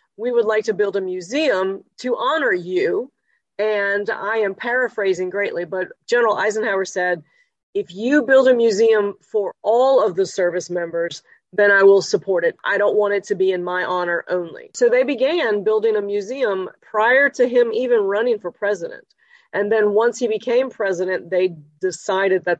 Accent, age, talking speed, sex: American, 40-59, 180 wpm, female